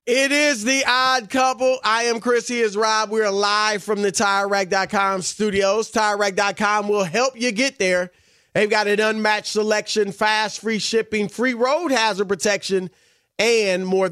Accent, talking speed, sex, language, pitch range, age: American, 160 wpm, male, English, 175-225 Hz, 30-49